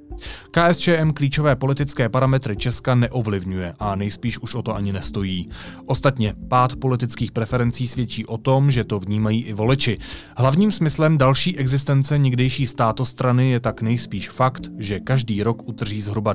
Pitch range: 105-130 Hz